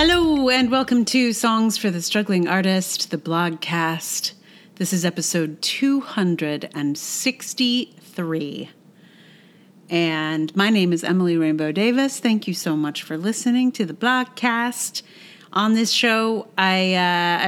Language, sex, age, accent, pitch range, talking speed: English, female, 30-49, American, 165-225 Hz, 135 wpm